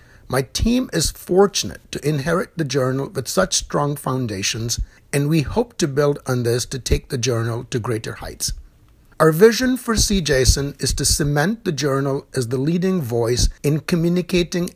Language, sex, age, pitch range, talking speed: English, male, 60-79, 130-180 Hz, 170 wpm